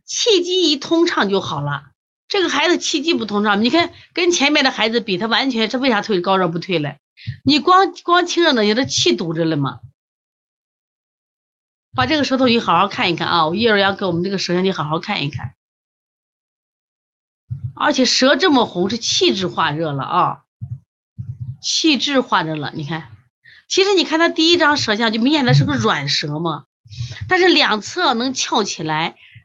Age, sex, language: 30-49, female, Chinese